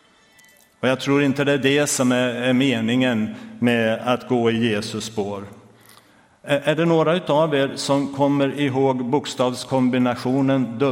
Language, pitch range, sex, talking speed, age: Swedish, 115-140 Hz, male, 135 wpm, 60-79